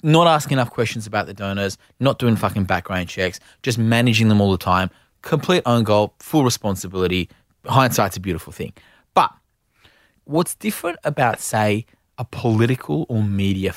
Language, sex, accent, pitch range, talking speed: English, male, Australian, 95-125 Hz, 155 wpm